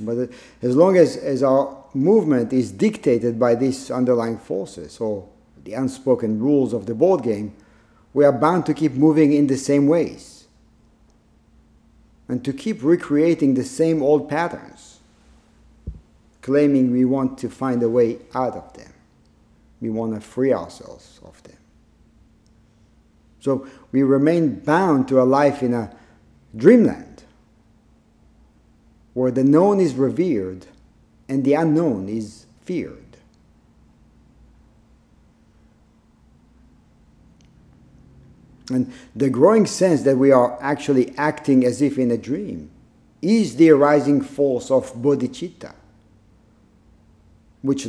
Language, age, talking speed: English, 50-69, 120 wpm